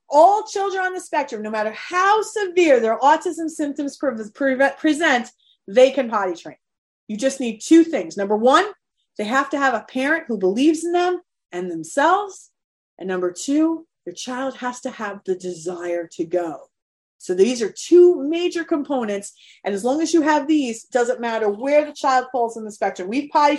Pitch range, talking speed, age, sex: 220-300 Hz, 190 wpm, 30-49, female